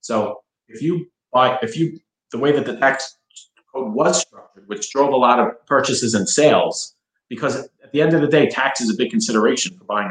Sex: male